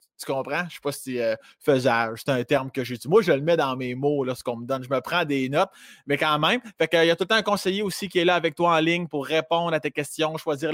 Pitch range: 140-180 Hz